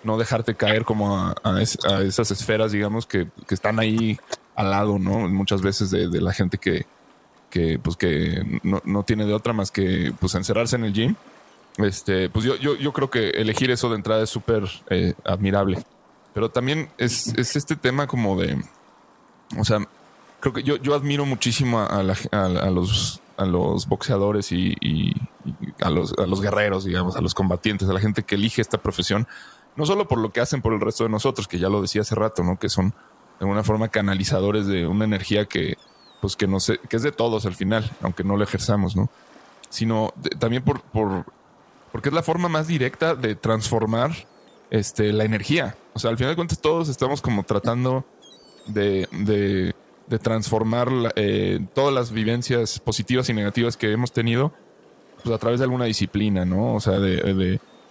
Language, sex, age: Spanish, male, 20-39